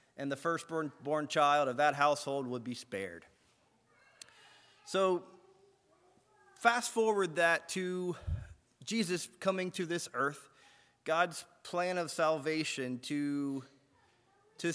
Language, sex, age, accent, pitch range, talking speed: English, male, 30-49, American, 145-180 Hz, 105 wpm